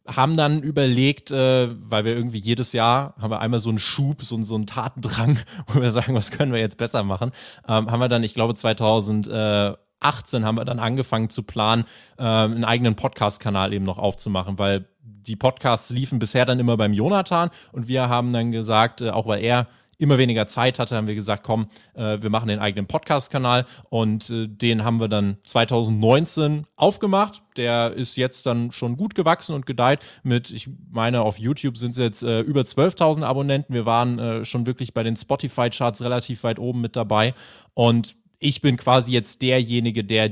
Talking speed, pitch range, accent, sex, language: 185 wpm, 110-130 Hz, German, male, German